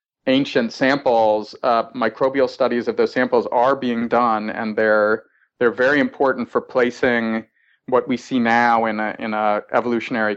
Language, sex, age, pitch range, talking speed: English, male, 30-49, 115-135 Hz, 155 wpm